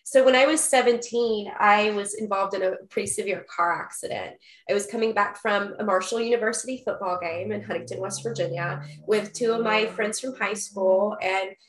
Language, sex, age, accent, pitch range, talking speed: English, female, 20-39, American, 185-215 Hz, 190 wpm